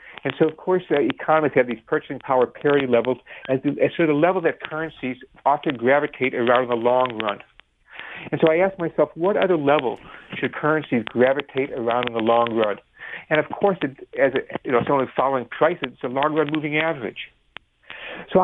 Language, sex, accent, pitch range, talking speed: English, male, American, 130-165 Hz, 195 wpm